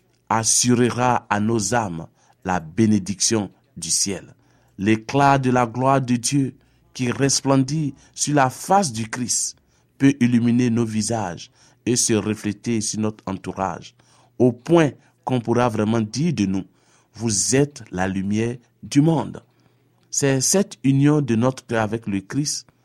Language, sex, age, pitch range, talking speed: French, male, 50-69, 110-135 Hz, 140 wpm